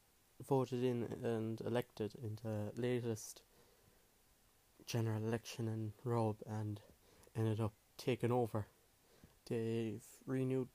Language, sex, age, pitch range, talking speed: English, male, 20-39, 110-125 Hz, 100 wpm